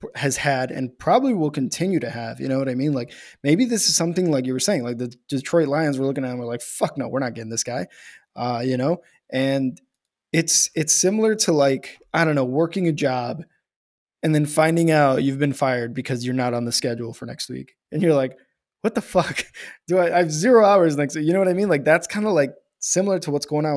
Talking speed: 250 wpm